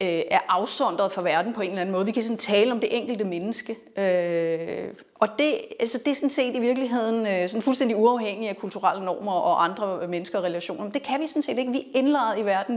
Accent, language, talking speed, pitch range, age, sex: native, Danish, 225 wpm, 205-255 Hz, 40-59, female